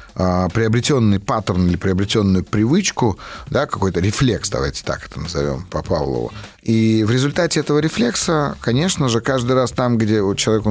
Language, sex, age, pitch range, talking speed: Russian, male, 30-49, 95-125 Hz, 145 wpm